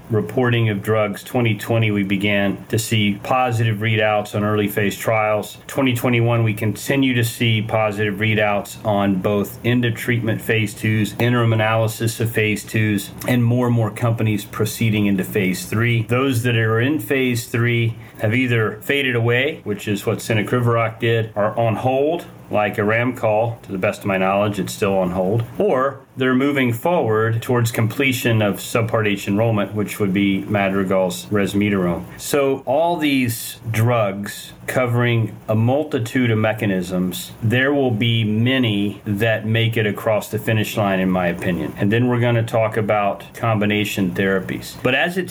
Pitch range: 105-120 Hz